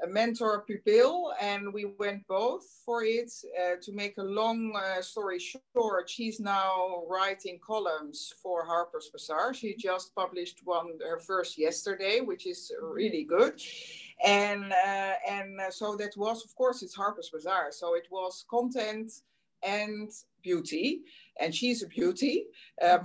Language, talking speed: English, 150 wpm